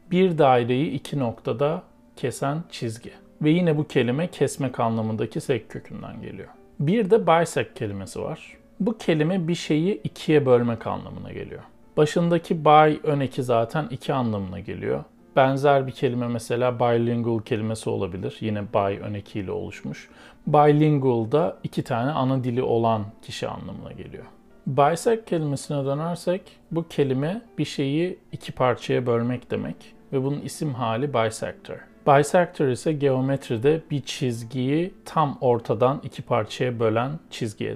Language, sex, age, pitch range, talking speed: Turkish, male, 40-59, 120-155 Hz, 135 wpm